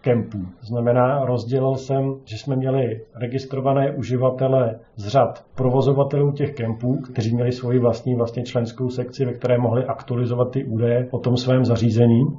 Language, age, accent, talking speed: Czech, 40-59, native, 150 wpm